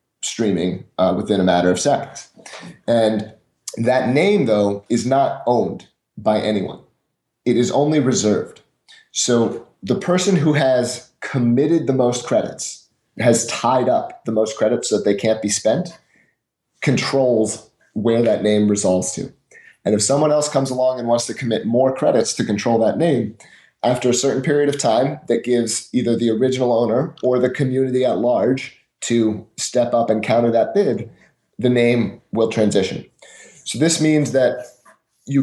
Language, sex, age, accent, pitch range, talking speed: English, male, 30-49, American, 115-135 Hz, 165 wpm